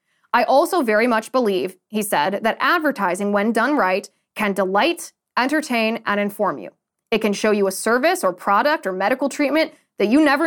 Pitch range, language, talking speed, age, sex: 200-275 Hz, English, 185 wpm, 20-39, female